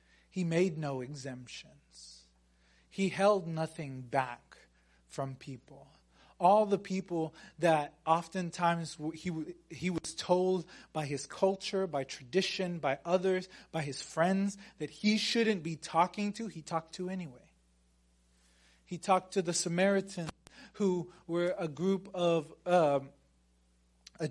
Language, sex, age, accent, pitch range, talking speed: English, male, 30-49, American, 145-195 Hz, 125 wpm